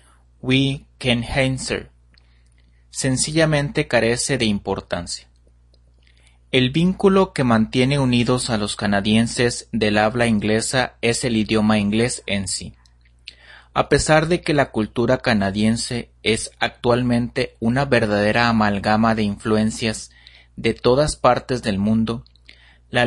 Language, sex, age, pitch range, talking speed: Spanish, male, 30-49, 95-130 Hz, 115 wpm